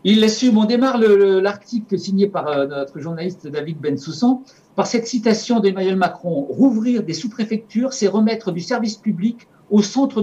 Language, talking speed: French, 180 wpm